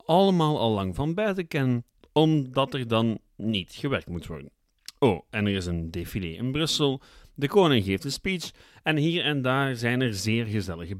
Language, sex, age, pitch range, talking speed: Dutch, male, 40-59, 105-145 Hz, 185 wpm